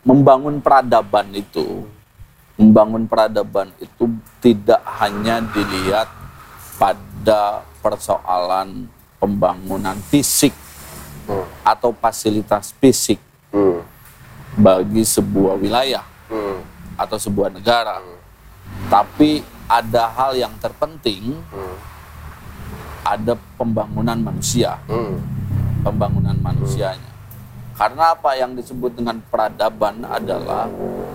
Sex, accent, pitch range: male, native, 100-130 Hz